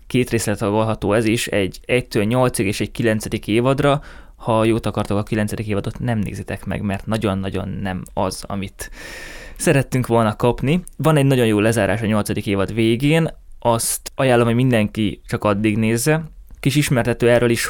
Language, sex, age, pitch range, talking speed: Hungarian, male, 20-39, 105-135 Hz, 165 wpm